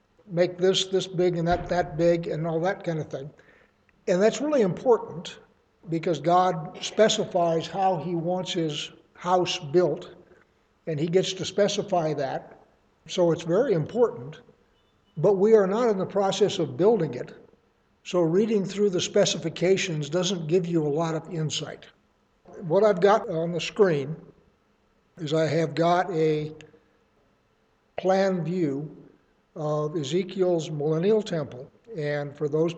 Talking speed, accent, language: 145 wpm, American, English